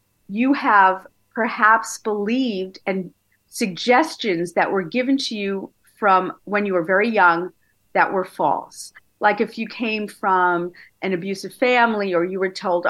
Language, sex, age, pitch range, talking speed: English, female, 40-59, 185-260 Hz, 150 wpm